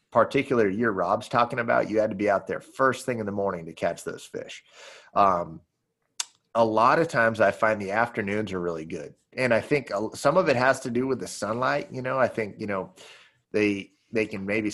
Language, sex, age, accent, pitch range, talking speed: English, male, 30-49, American, 105-125 Hz, 220 wpm